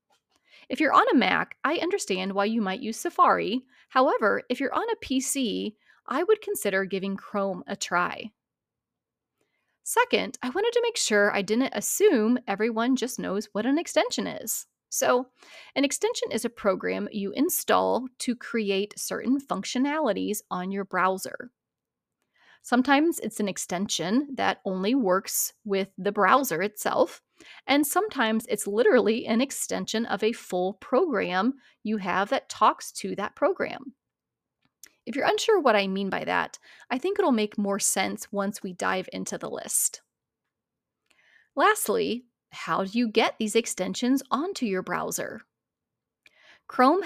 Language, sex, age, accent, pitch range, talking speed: English, female, 30-49, American, 200-270 Hz, 145 wpm